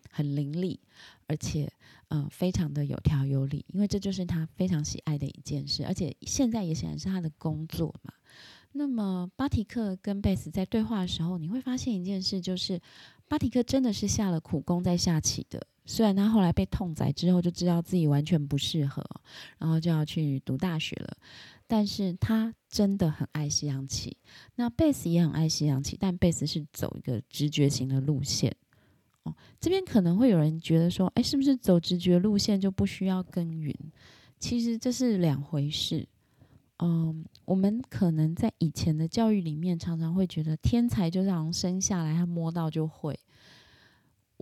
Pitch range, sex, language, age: 150-195 Hz, female, Chinese, 20-39